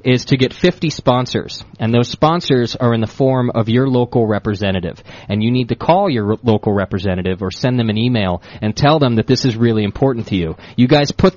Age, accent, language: 30-49, American, English